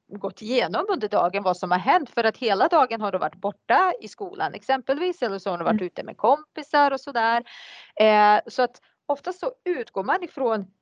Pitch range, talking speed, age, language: 210-295 Hz, 210 wpm, 30-49, Swedish